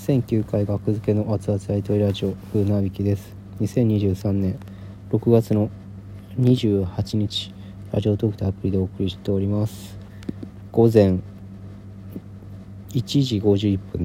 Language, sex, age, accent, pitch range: Japanese, male, 40-59, native, 100-110 Hz